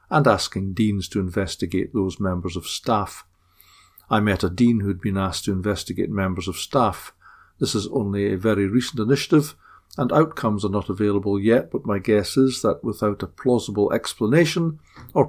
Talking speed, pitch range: 175 wpm, 100-115 Hz